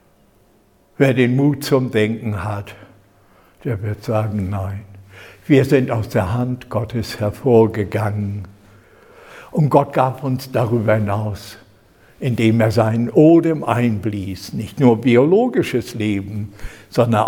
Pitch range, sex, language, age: 105-125 Hz, male, German, 60-79